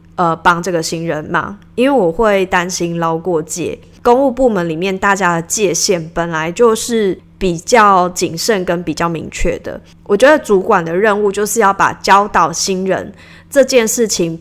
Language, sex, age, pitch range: Chinese, female, 20-39, 170-220 Hz